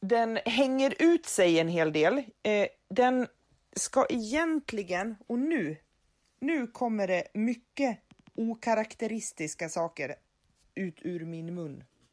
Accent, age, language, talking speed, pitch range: Swedish, 30-49, English, 110 wpm, 165-230 Hz